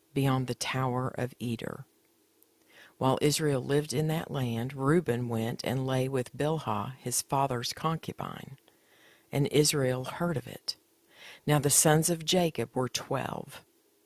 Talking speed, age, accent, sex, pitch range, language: 135 wpm, 50-69, American, female, 125-155 Hz, English